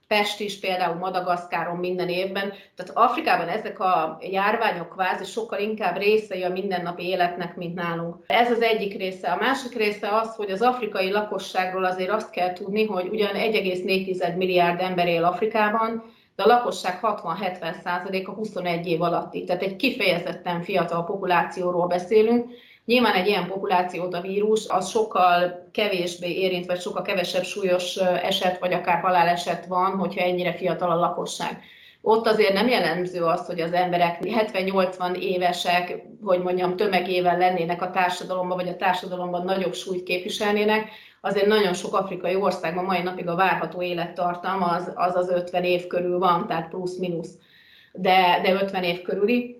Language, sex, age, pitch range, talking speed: Hungarian, female, 30-49, 180-205 Hz, 155 wpm